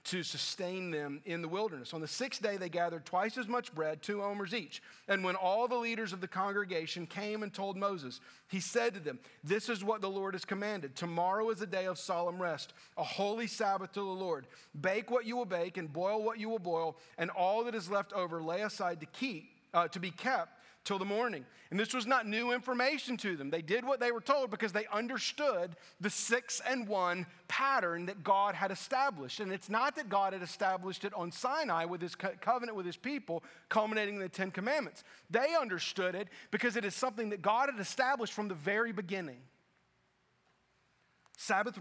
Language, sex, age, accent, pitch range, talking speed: English, male, 40-59, American, 170-220 Hz, 210 wpm